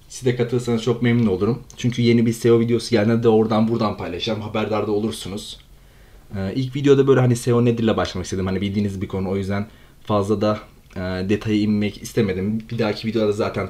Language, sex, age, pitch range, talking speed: Turkish, male, 30-49, 105-120 Hz, 195 wpm